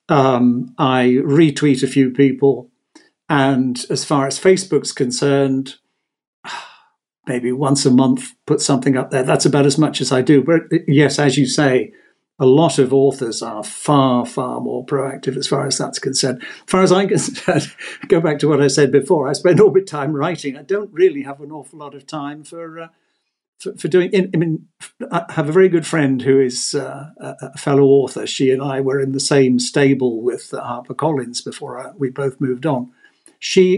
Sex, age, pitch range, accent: male, 50-69, 135-165 Hz, British